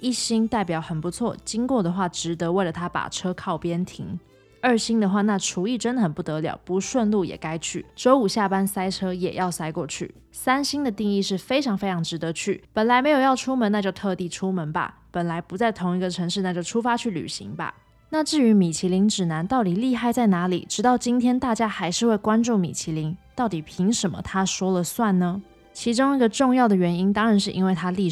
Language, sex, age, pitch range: Chinese, female, 20-39, 175-225 Hz